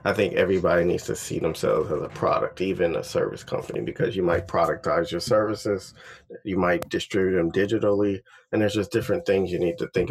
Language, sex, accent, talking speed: English, male, American, 200 wpm